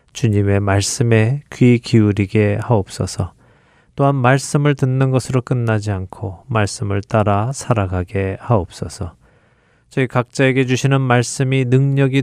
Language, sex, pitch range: Korean, male, 105-130 Hz